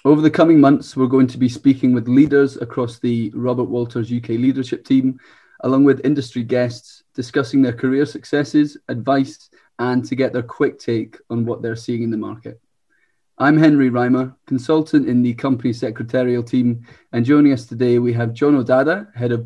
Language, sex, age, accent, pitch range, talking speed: English, male, 30-49, British, 120-140 Hz, 180 wpm